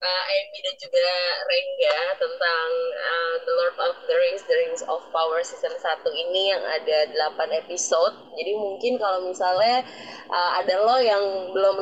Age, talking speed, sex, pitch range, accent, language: 20-39, 160 wpm, female, 185-240 Hz, native, Indonesian